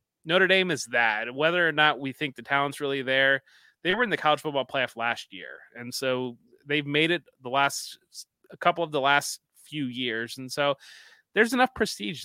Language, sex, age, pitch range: English, male, 30-49, 135-155 Hz